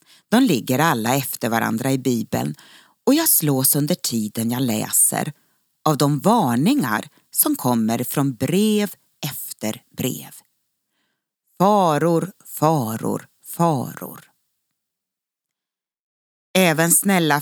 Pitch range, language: 125-180 Hz, Swedish